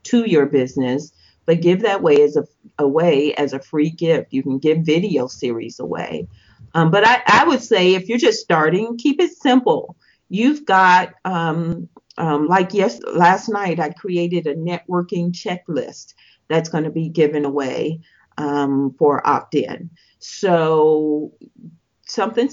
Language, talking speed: English, 150 wpm